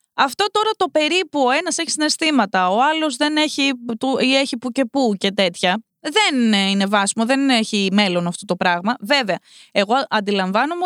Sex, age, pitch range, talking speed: female, 20-39, 200-290 Hz, 175 wpm